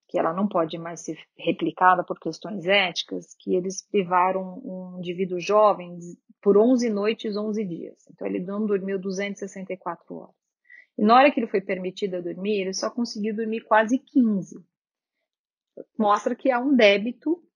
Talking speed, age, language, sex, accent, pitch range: 155 wpm, 30-49, Portuguese, female, Brazilian, 200-270 Hz